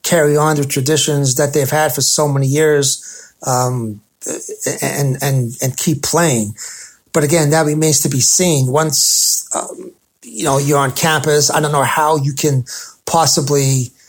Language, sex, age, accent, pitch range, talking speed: English, male, 30-49, American, 135-155 Hz, 160 wpm